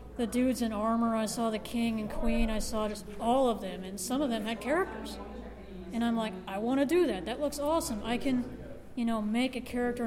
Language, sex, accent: English, female, American